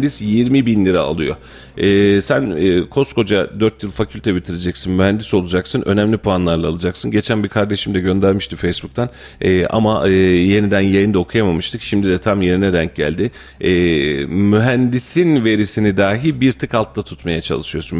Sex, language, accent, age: male, Turkish, native, 40-59